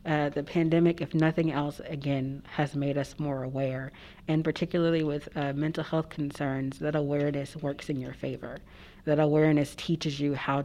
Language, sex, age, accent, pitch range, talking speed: English, female, 40-59, American, 145-175 Hz, 170 wpm